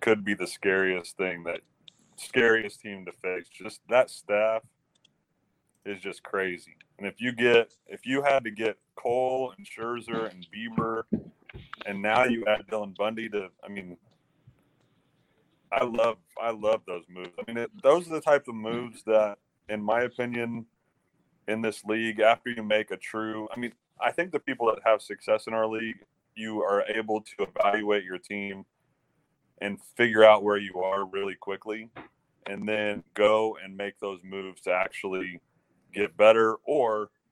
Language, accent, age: English, American, 30-49